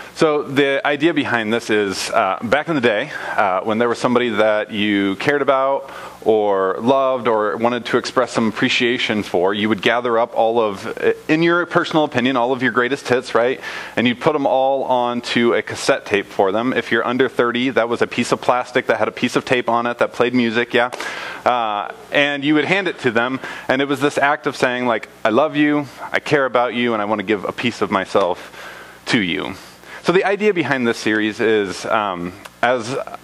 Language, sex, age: English, male, 30-49